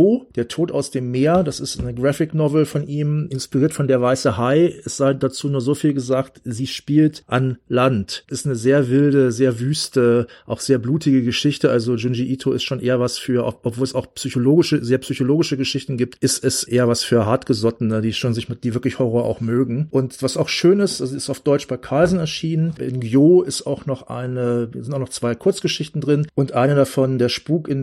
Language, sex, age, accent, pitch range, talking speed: German, male, 40-59, German, 120-145 Hz, 215 wpm